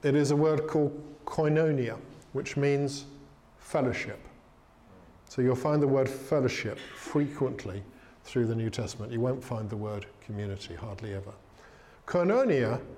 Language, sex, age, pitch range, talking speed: English, male, 50-69, 125-155 Hz, 135 wpm